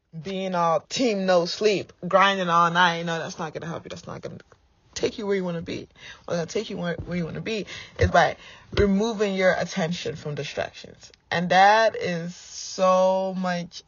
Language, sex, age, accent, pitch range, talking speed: English, female, 20-39, American, 155-195 Hz, 210 wpm